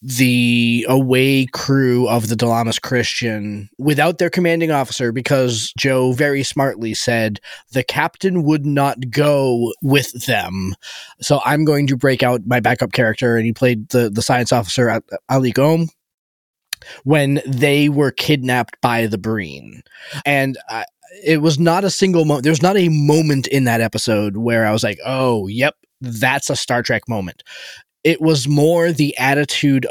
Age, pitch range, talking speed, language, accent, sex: 20-39, 120-150 Hz, 155 wpm, English, American, male